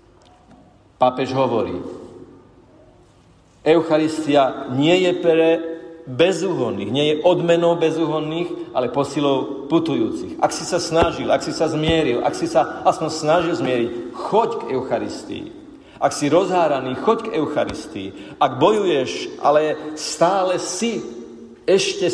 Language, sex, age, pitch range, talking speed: Slovak, male, 50-69, 125-170 Hz, 115 wpm